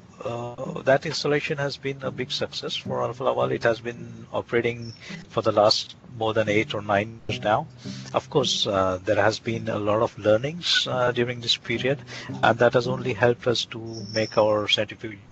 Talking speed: 190 wpm